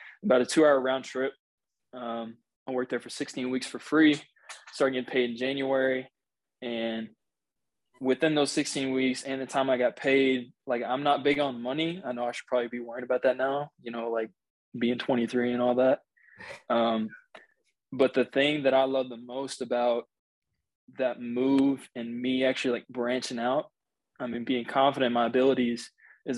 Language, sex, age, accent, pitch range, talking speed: English, male, 20-39, American, 125-140 Hz, 180 wpm